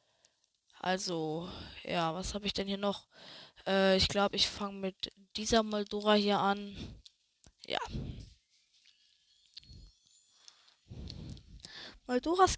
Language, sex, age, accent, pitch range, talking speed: German, female, 20-39, German, 190-220 Hz, 95 wpm